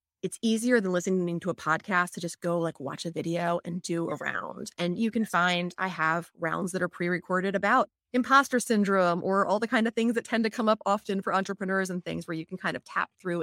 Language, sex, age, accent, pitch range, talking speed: English, female, 30-49, American, 170-205 Hz, 240 wpm